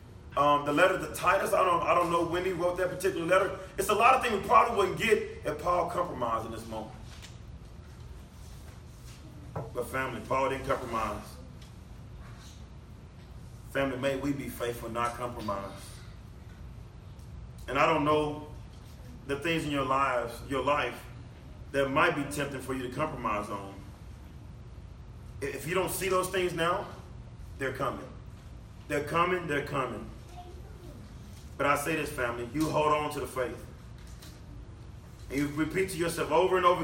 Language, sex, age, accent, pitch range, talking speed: English, male, 30-49, American, 110-160 Hz, 155 wpm